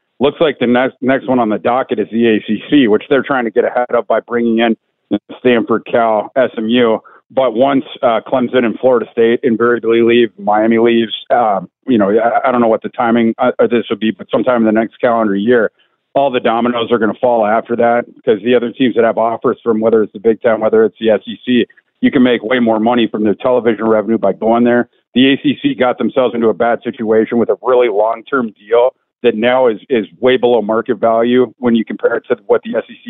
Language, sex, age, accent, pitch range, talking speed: English, male, 50-69, American, 115-130 Hz, 230 wpm